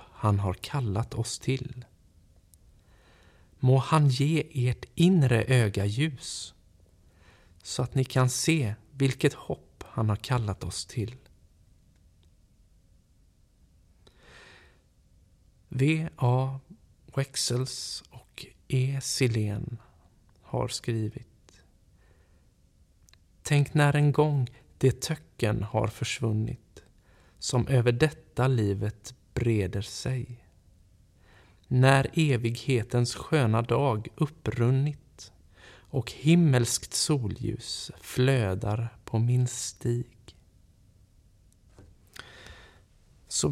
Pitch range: 95-130 Hz